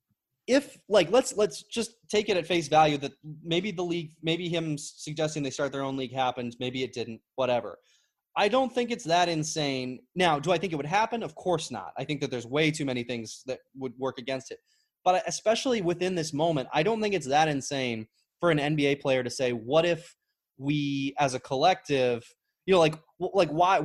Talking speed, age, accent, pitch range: 210 wpm, 20-39, American, 135-180 Hz